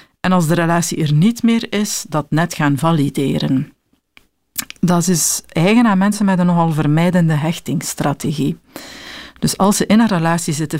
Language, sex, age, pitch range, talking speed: Dutch, female, 50-69, 155-190 Hz, 160 wpm